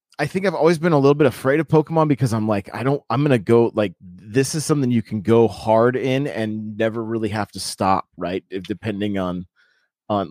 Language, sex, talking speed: English, male, 225 wpm